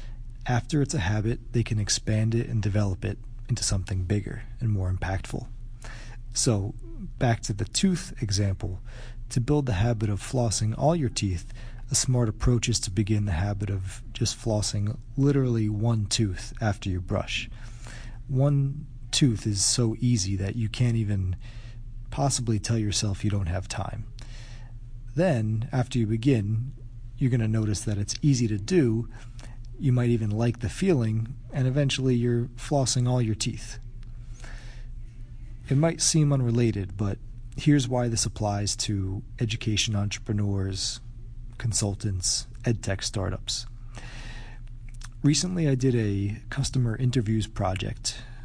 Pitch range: 110-120 Hz